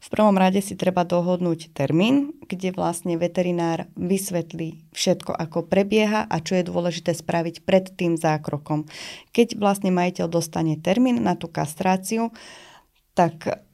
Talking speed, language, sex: 135 wpm, Slovak, female